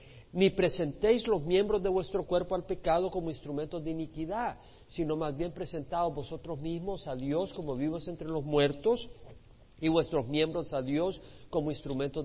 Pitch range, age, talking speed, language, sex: 135-175 Hz, 50-69, 160 wpm, Spanish, male